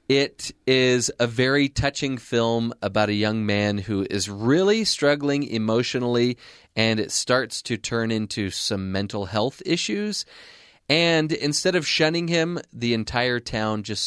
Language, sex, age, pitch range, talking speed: English, male, 30-49, 110-145 Hz, 145 wpm